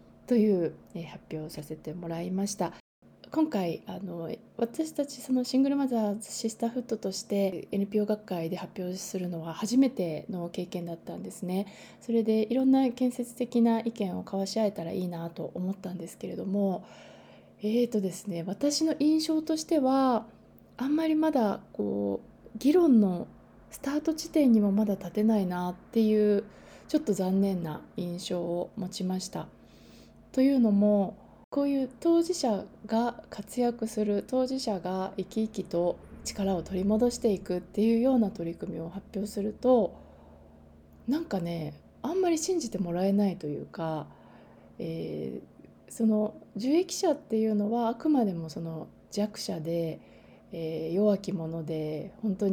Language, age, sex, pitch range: Japanese, 20-39, female, 180-245 Hz